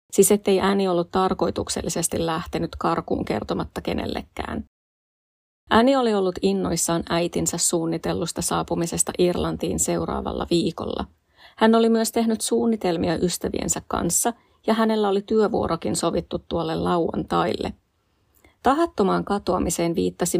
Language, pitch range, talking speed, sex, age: Finnish, 175-215 Hz, 105 wpm, female, 30-49